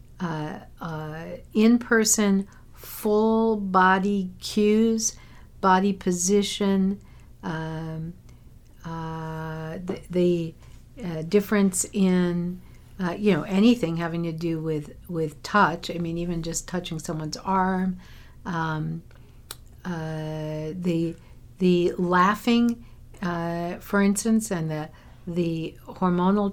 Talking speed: 100 wpm